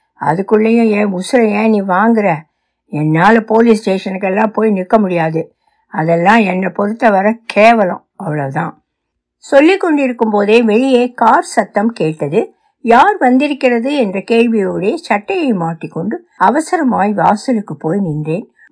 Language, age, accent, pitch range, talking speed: Tamil, 60-79, native, 175-265 Hz, 110 wpm